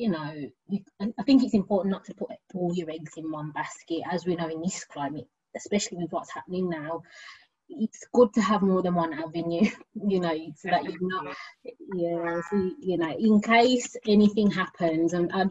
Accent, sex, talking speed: British, female, 195 wpm